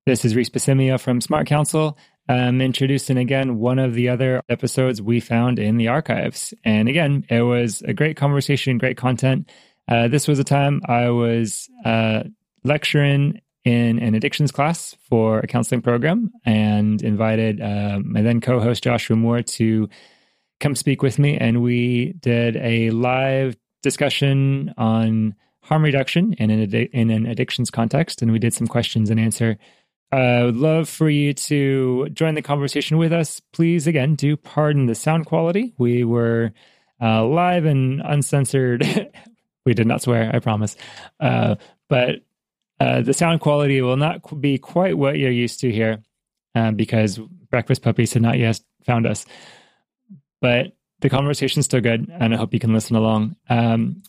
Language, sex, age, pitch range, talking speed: English, male, 20-39, 115-145 Hz, 170 wpm